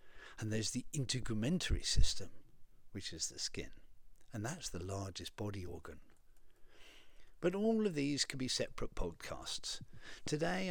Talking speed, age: 135 wpm, 50-69